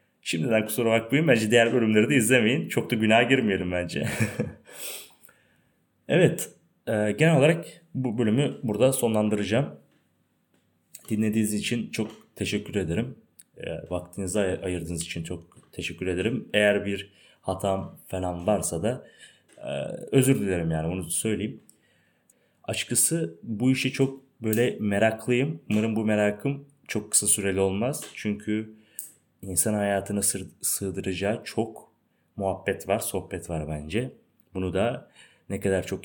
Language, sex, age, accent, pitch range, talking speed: Turkish, male, 30-49, native, 90-115 Hz, 125 wpm